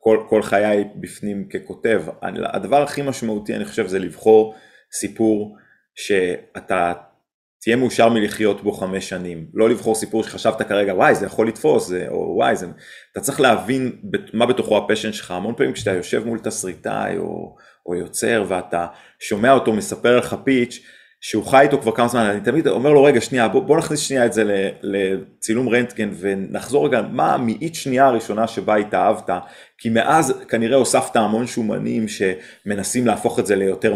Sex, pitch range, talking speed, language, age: male, 100-120 Hz, 170 wpm, Hebrew, 30-49